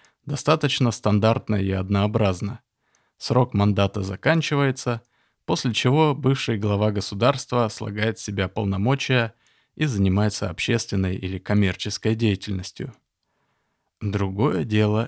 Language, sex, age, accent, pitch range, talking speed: Russian, male, 20-39, native, 100-120 Hz, 95 wpm